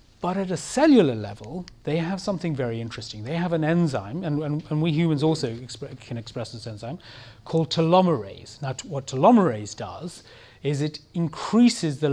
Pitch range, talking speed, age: 115-155 Hz, 170 wpm, 30-49